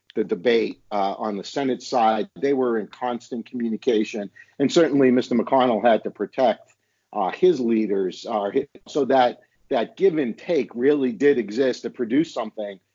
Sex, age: male, 50-69